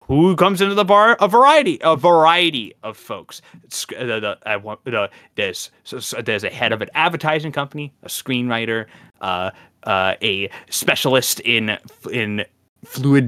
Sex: male